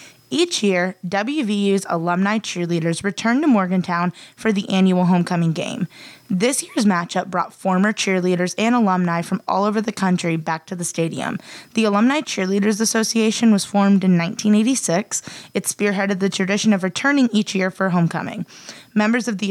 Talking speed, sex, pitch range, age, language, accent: 155 wpm, female, 175-215 Hz, 20-39, English, American